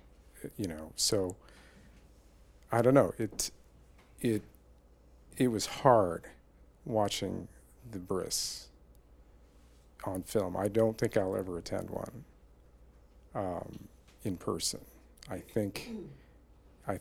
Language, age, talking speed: English, 50-69, 100 wpm